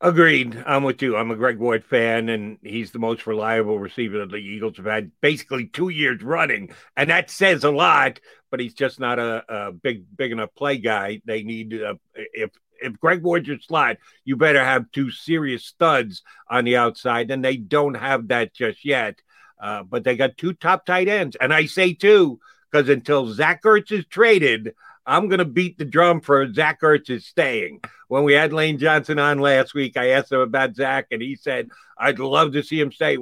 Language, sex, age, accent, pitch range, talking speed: English, male, 50-69, American, 125-165 Hz, 210 wpm